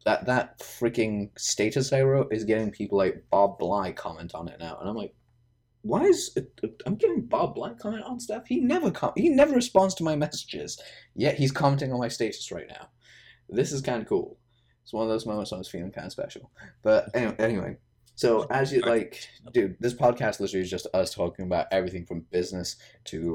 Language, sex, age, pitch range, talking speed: English, male, 20-39, 105-145 Hz, 215 wpm